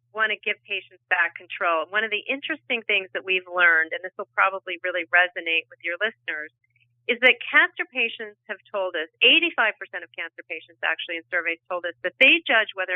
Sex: female